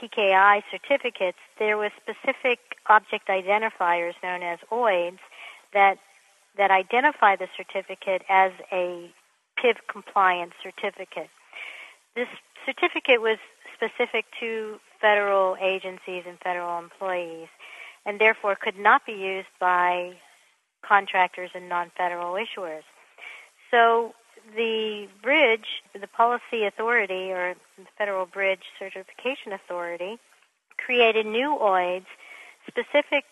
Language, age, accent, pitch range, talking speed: English, 50-69, American, 185-225 Hz, 105 wpm